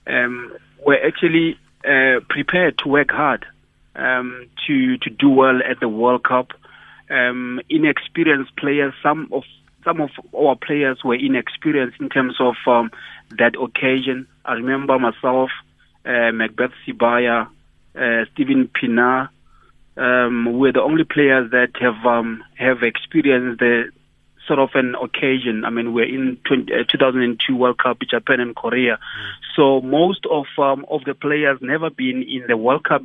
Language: English